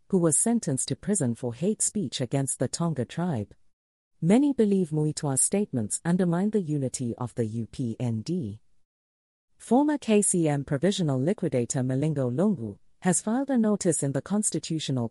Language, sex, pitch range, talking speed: English, female, 125-195 Hz, 140 wpm